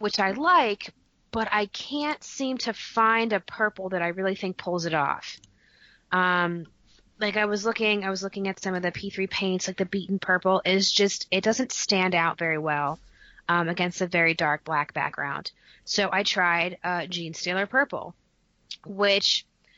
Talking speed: 180 wpm